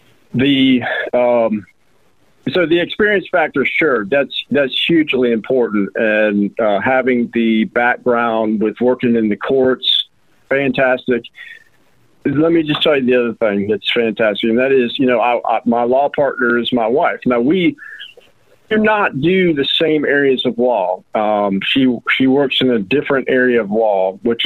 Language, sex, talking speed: English, male, 160 wpm